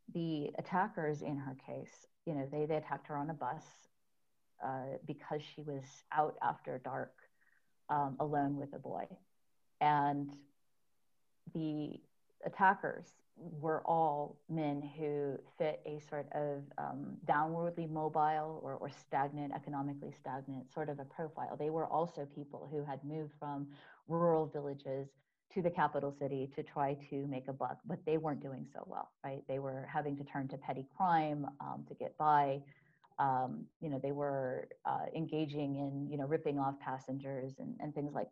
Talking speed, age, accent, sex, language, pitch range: 165 wpm, 30-49, American, female, English, 140-155 Hz